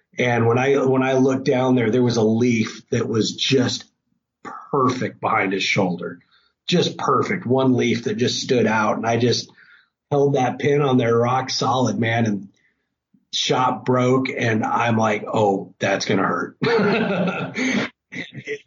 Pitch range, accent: 120-145 Hz, American